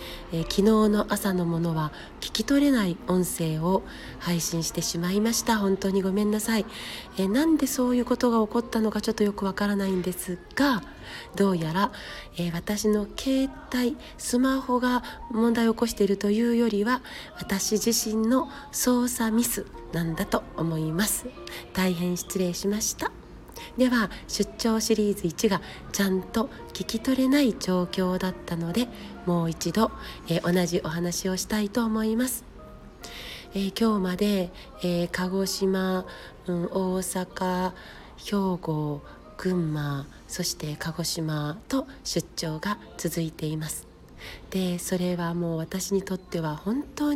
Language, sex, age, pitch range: Japanese, female, 40-59, 175-225 Hz